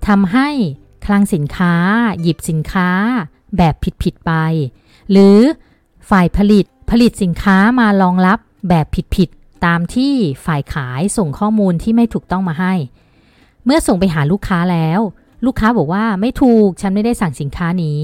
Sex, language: female, Thai